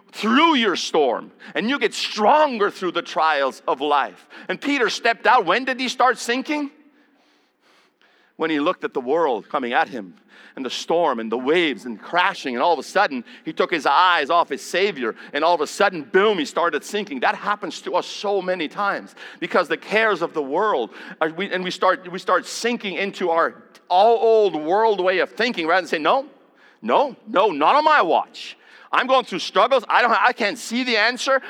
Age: 50-69